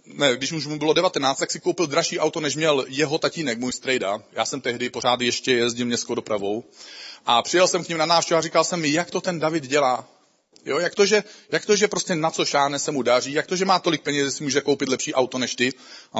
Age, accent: 40-59, native